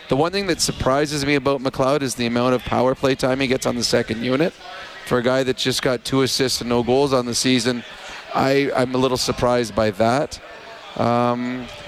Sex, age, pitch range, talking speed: male, 40-59, 120-140 Hz, 215 wpm